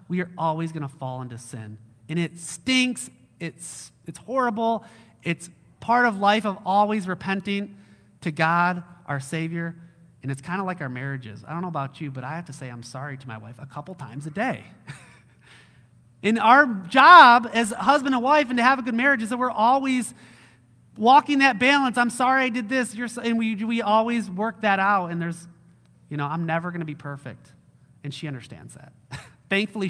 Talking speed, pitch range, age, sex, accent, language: 205 wpm, 140-205 Hz, 30-49, male, American, English